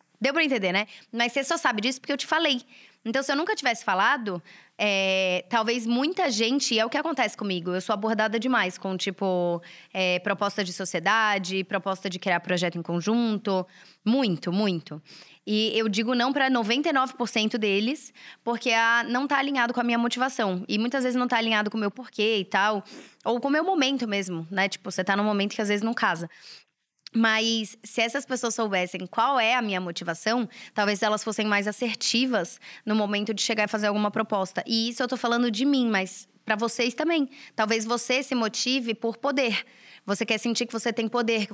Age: 20-39